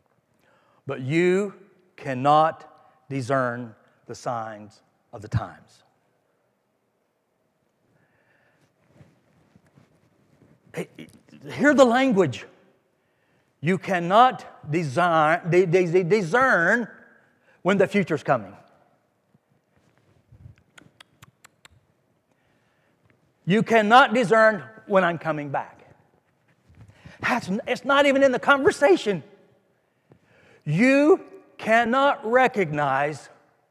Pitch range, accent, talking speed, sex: 170-280 Hz, American, 65 wpm, male